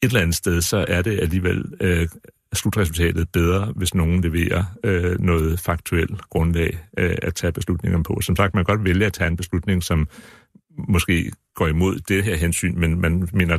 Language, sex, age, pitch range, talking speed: Danish, male, 60-79, 85-95 Hz, 190 wpm